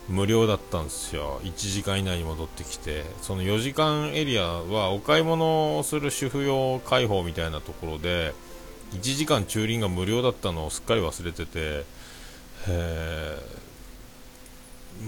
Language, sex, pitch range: Japanese, male, 85-125 Hz